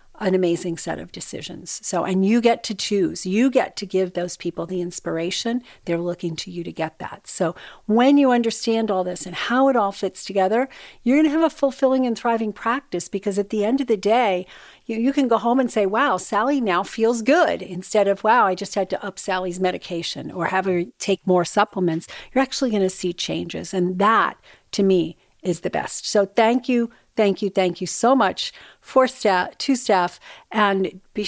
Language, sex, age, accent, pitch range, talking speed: English, female, 50-69, American, 180-235 Hz, 210 wpm